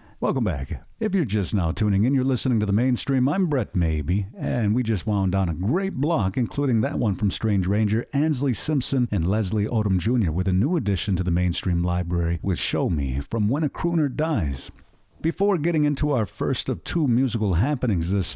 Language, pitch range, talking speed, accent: English, 100-140 Hz, 205 wpm, American